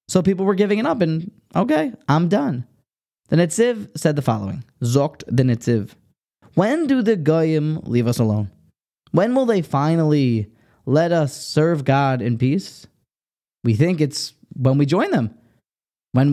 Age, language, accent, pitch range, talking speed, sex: 20-39, English, American, 130-185 Hz, 160 wpm, male